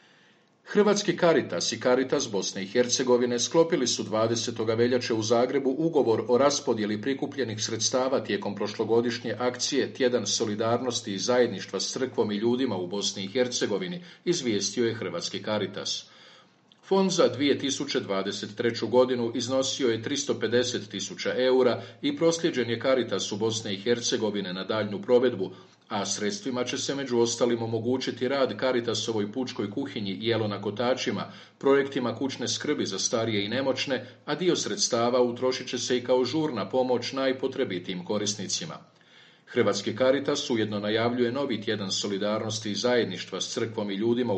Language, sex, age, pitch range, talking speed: Croatian, male, 50-69, 110-130 Hz, 140 wpm